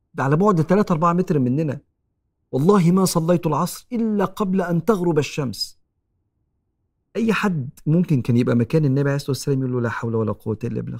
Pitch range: 125-175 Hz